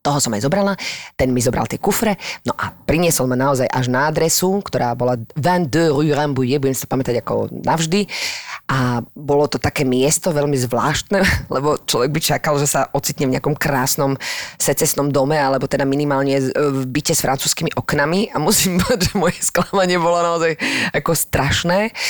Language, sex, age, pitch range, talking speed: Slovak, female, 20-39, 140-180 Hz, 175 wpm